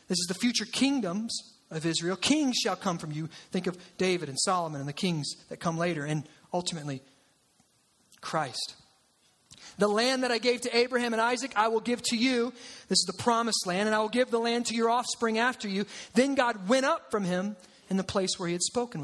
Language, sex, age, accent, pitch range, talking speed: English, male, 40-59, American, 205-275 Hz, 220 wpm